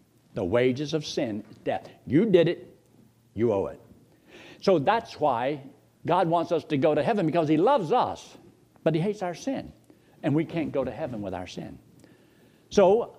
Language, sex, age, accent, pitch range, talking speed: English, male, 60-79, American, 120-170 Hz, 185 wpm